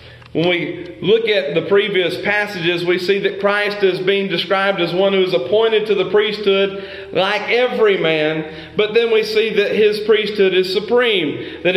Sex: male